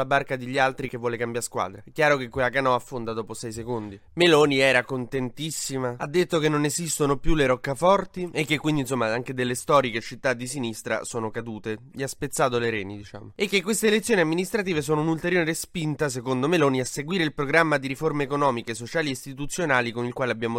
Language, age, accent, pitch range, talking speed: Italian, 20-39, native, 125-155 Hz, 200 wpm